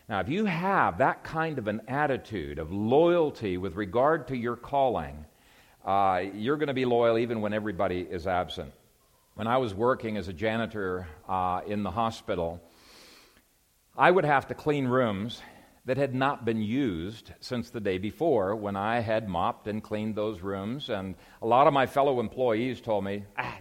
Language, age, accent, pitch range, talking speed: English, 50-69, American, 105-140 Hz, 180 wpm